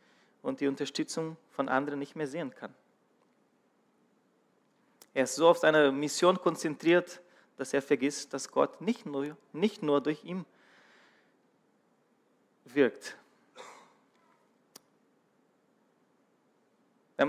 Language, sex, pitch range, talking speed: German, male, 145-180 Hz, 100 wpm